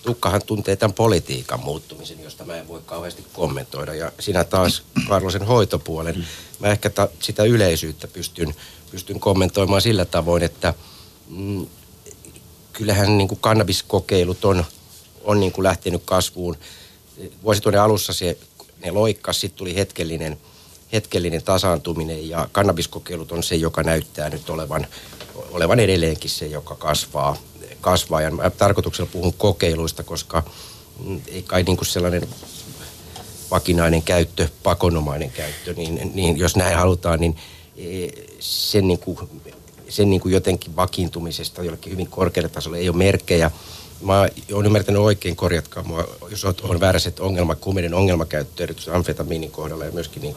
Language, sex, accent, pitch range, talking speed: Finnish, male, native, 85-100 Hz, 130 wpm